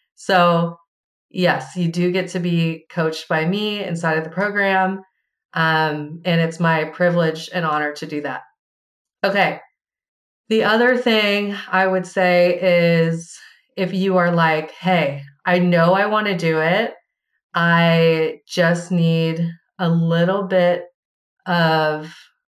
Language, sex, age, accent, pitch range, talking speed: English, female, 30-49, American, 165-195 Hz, 135 wpm